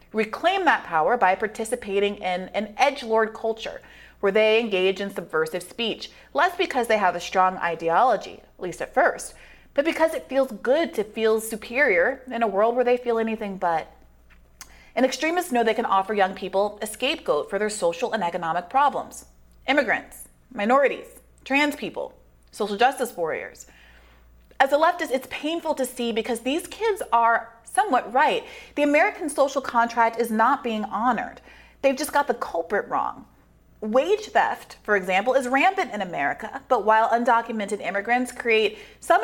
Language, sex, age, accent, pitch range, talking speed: English, female, 30-49, American, 205-275 Hz, 160 wpm